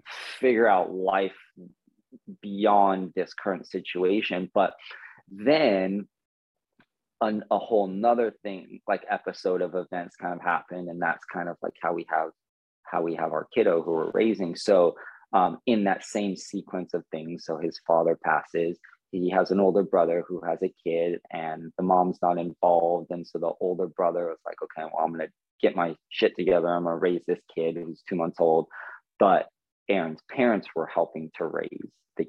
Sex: male